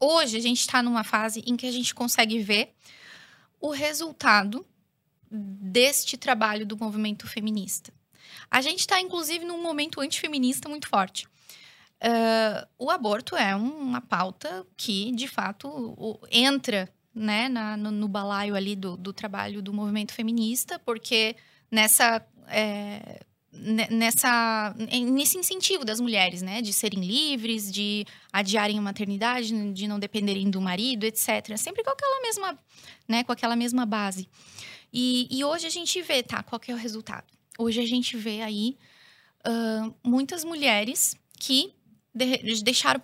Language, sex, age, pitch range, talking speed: Portuguese, female, 10-29, 210-255 Hz, 140 wpm